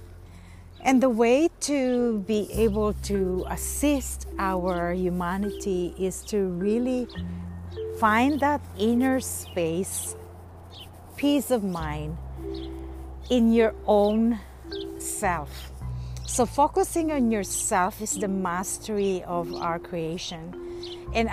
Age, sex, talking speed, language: 50-69, female, 100 wpm, English